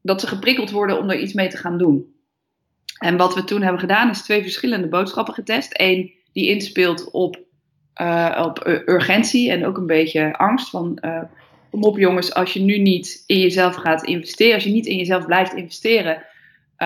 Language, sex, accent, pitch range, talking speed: Dutch, female, Dutch, 165-205 Hz, 190 wpm